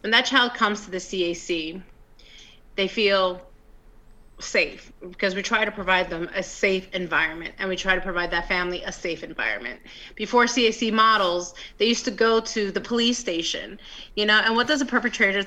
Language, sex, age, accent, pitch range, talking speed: English, female, 30-49, American, 190-230 Hz, 180 wpm